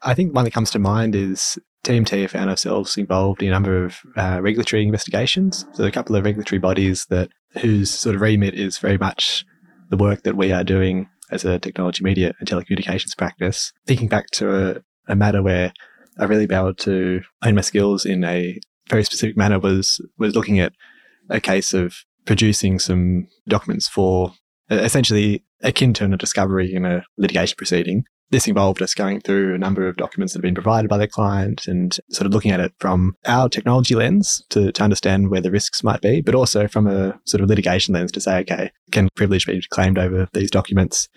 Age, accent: 20-39, Australian